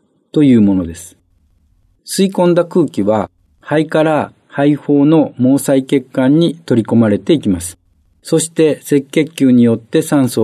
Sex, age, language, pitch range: male, 50-69, Japanese, 100-150 Hz